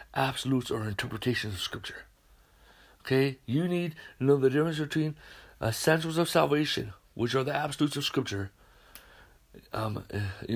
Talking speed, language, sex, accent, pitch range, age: 135 wpm, English, male, American, 120-170 Hz, 60-79